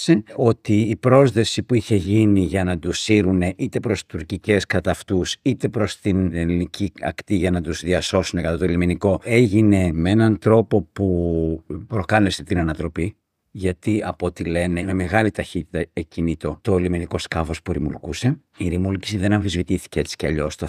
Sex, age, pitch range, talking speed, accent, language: male, 50-69, 90-115 Hz, 160 wpm, Spanish, Greek